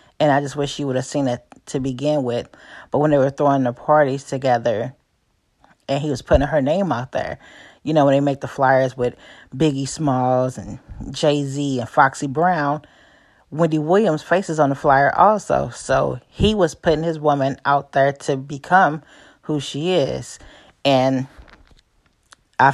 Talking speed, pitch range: 170 wpm, 130-150 Hz